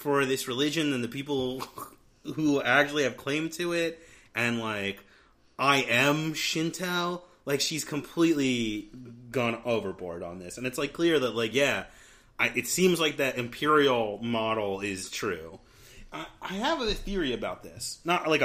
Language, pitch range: English, 110-150 Hz